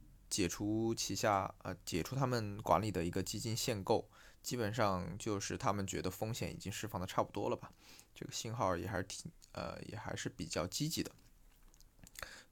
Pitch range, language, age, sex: 95-110 Hz, Chinese, 20-39, male